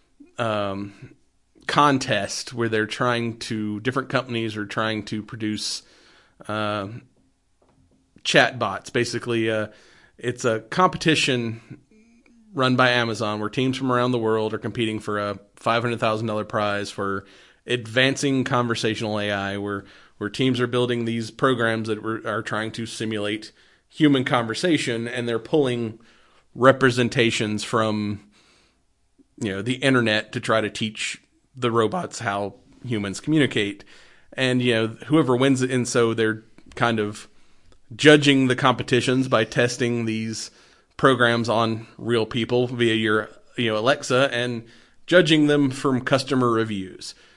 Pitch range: 110-125 Hz